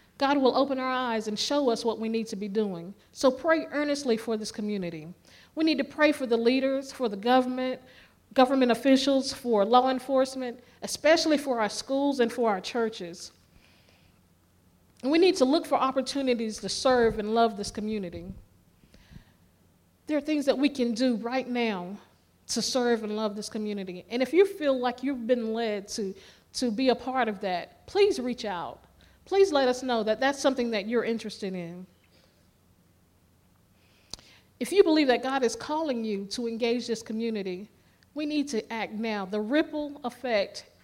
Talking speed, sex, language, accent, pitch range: 175 wpm, female, English, American, 205-260 Hz